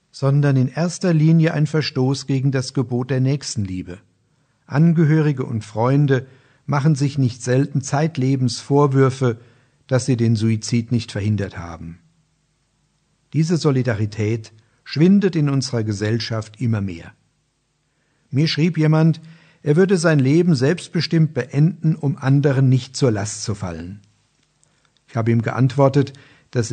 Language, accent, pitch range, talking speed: German, German, 120-155 Hz, 125 wpm